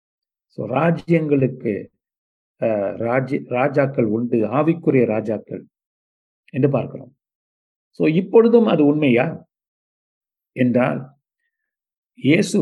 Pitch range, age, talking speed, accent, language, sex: 115-150 Hz, 50-69, 65 wpm, native, Tamil, male